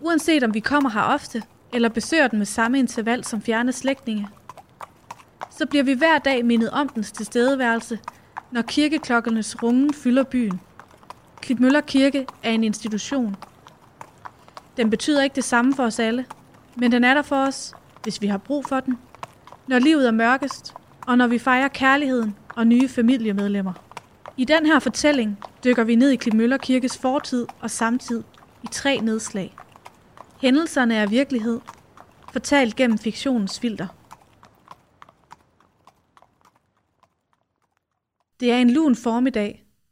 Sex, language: female, Danish